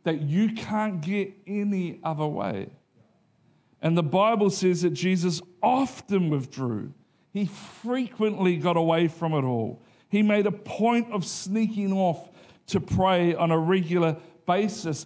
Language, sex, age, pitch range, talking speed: English, male, 50-69, 160-195 Hz, 140 wpm